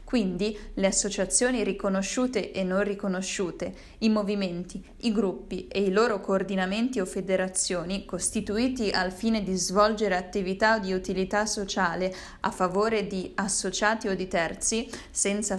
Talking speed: 130 wpm